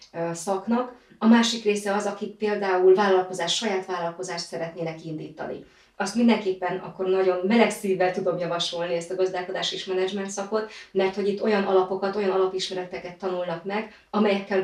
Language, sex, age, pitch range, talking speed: Hungarian, female, 30-49, 180-205 Hz, 150 wpm